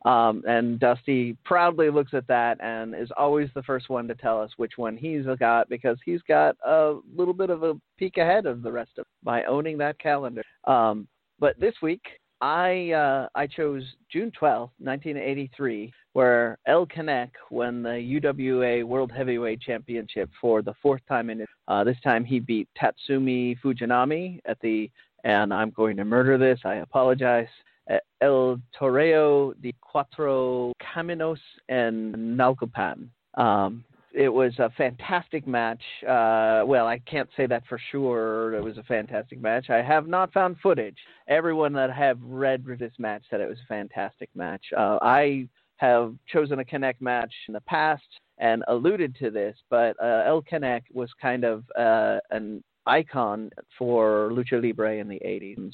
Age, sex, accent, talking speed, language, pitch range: 40-59, male, American, 170 wpm, English, 115-145 Hz